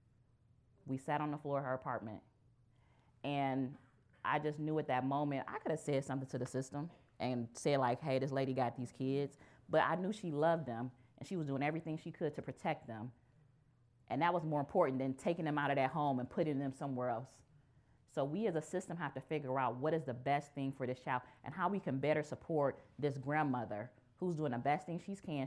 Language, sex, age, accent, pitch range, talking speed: English, female, 20-39, American, 125-155 Hz, 230 wpm